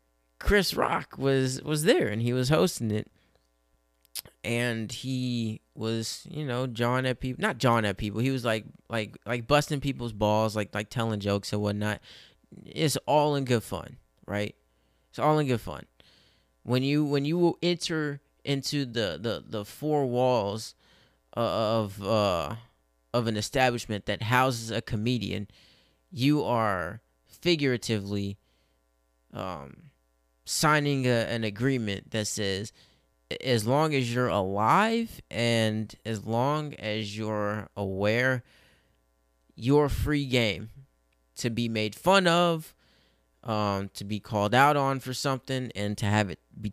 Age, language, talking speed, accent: 20-39, English, 140 wpm, American